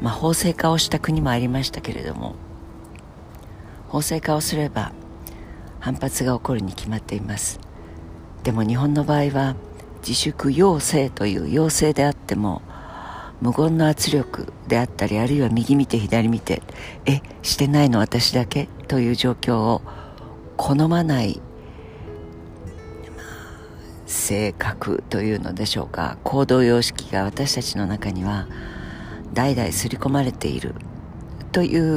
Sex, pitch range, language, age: female, 100-145 Hz, Japanese, 50-69